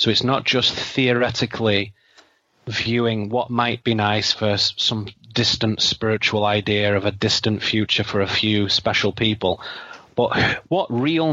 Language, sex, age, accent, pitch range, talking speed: English, male, 30-49, British, 105-120 Hz, 145 wpm